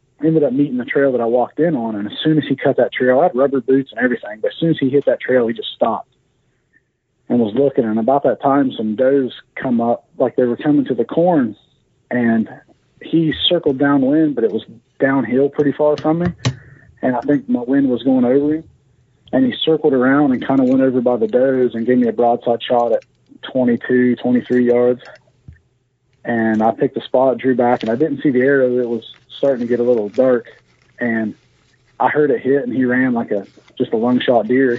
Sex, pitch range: male, 120-140 Hz